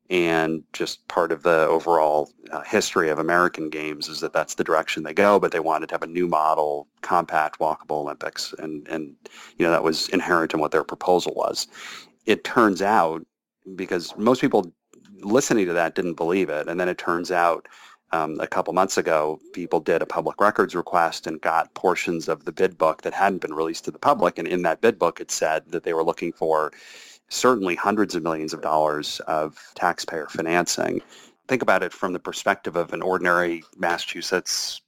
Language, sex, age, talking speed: English, male, 30-49, 195 wpm